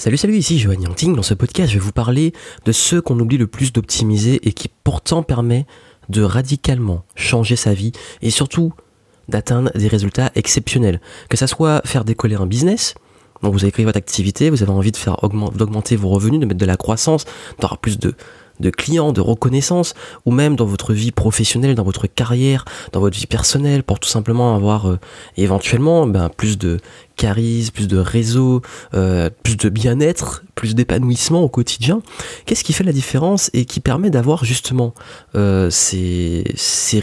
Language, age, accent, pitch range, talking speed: French, 20-39, French, 100-135 Hz, 185 wpm